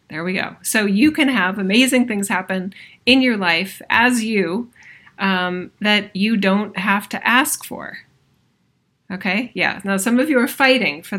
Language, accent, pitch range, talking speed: English, American, 190-240 Hz, 170 wpm